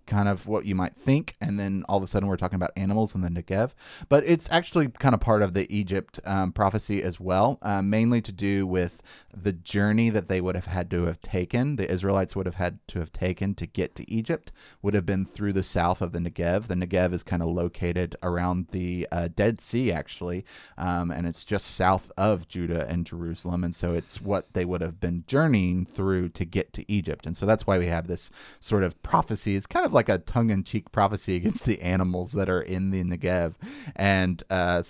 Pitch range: 90-100 Hz